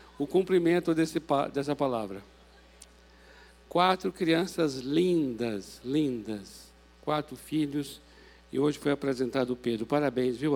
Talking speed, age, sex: 100 wpm, 60-79, male